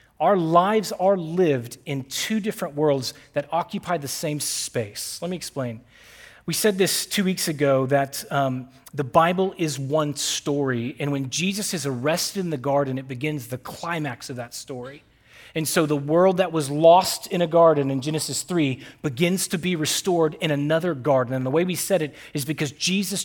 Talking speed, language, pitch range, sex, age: 190 wpm, English, 140-185 Hz, male, 30-49